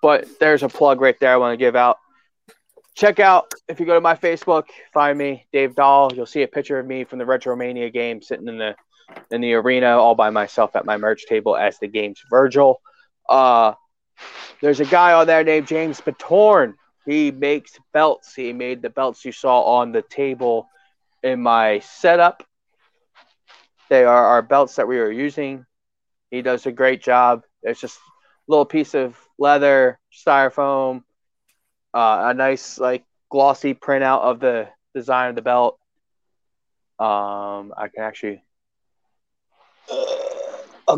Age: 20-39